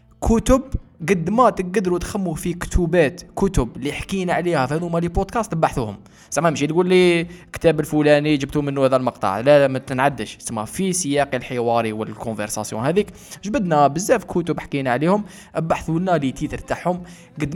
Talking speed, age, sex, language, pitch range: 155 wpm, 20-39, male, Arabic, 120-170 Hz